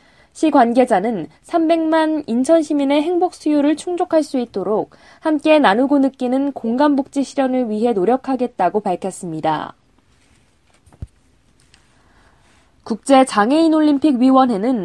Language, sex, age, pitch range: Korean, female, 20-39, 220-285 Hz